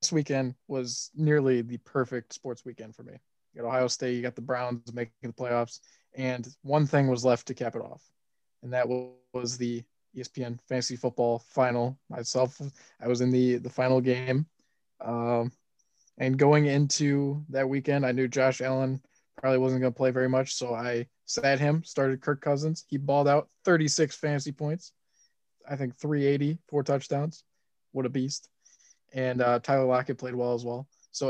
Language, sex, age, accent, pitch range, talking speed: English, male, 20-39, American, 125-145 Hz, 180 wpm